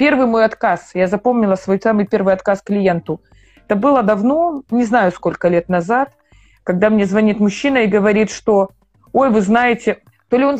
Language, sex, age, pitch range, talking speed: Russian, female, 20-39, 190-255 Hz, 175 wpm